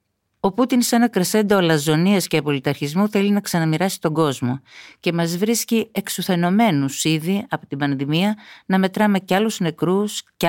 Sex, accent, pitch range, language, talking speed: female, native, 145-195 Hz, Greek, 155 wpm